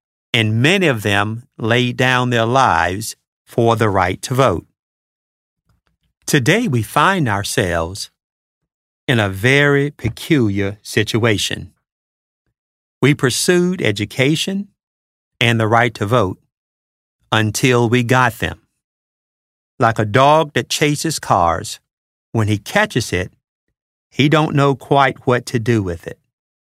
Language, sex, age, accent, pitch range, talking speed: English, male, 50-69, American, 105-135 Hz, 120 wpm